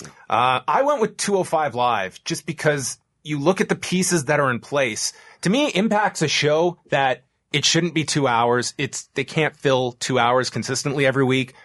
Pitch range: 125-165 Hz